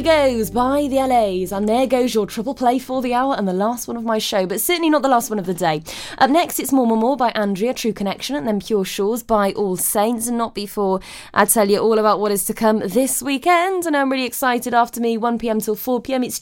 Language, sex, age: English, female, 20-39